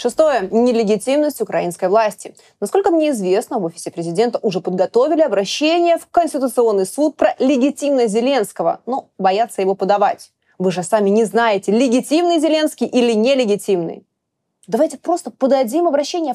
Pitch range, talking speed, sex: 215-305 Hz, 130 wpm, female